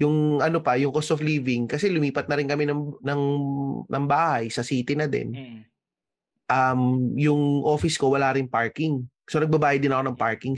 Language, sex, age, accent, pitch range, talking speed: Filipino, male, 20-39, native, 120-150 Hz, 185 wpm